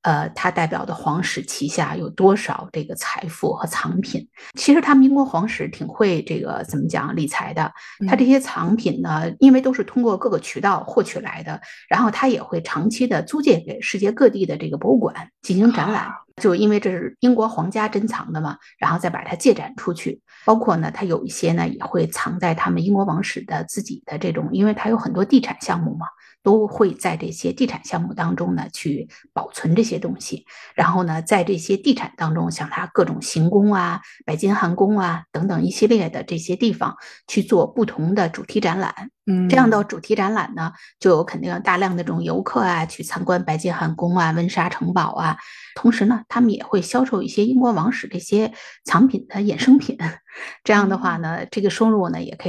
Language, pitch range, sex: Chinese, 180-230 Hz, female